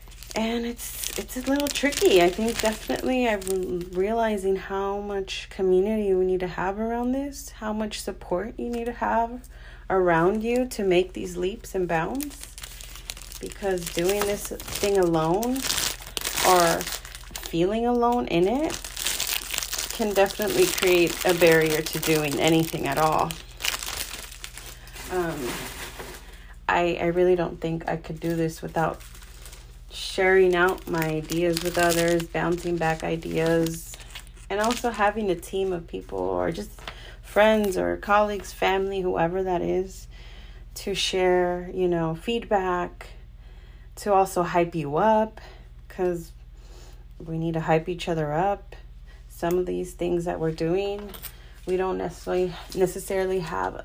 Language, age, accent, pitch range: English, 30-49, American, 155-195 Hz